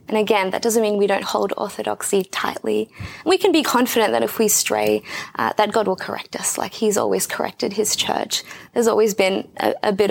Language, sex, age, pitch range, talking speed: English, female, 20-39, 190-235 Hz, 215 wpm